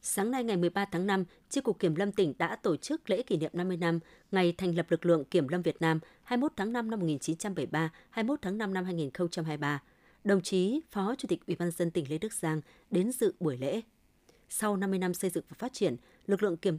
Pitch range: 165-220 Hz